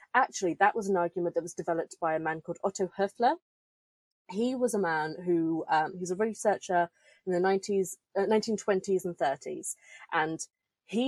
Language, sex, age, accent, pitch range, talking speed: English, female, 20-39, British, 170-220 Hz, 180 wpm